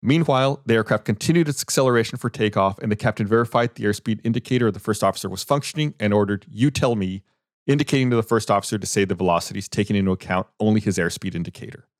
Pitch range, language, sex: 105-135 Hz, English, male